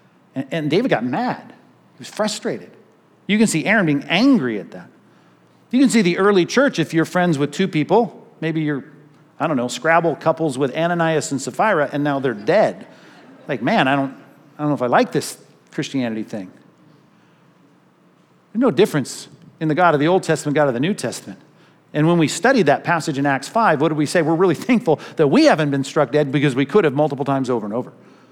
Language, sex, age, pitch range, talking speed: English, male, 50-69, 140-195 Hz, 215 wpm